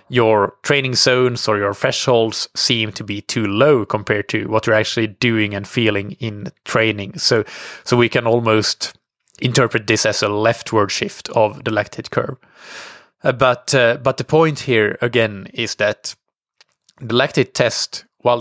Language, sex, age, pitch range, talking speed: English, male, 20-39, 110-130 Hz, 165 wpm